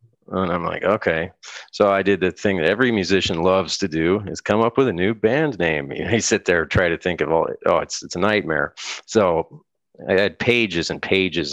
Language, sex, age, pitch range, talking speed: English, male, 40-59, 85-110 Hz, 225 wpm